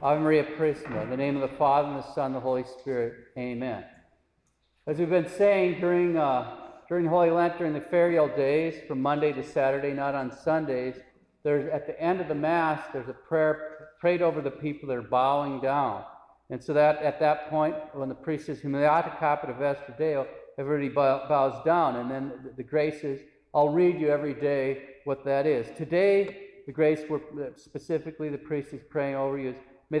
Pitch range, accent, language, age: 135-165 Hz, American, English, 50-69